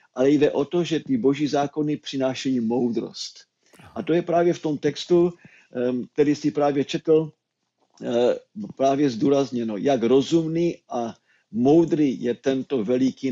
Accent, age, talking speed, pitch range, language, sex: native, 50-69, 135 wpm, 125-150 Hz, Czech, male